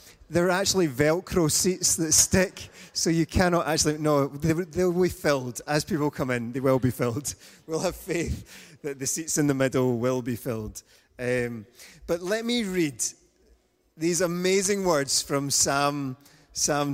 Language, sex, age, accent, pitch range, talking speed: English, male, 30-49, British, 130-165 Hz, 165 wpm